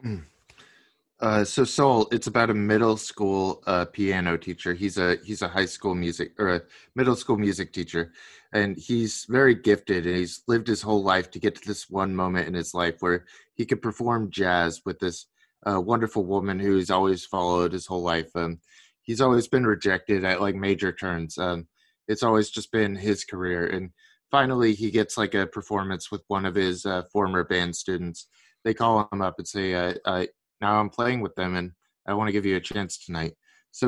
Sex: male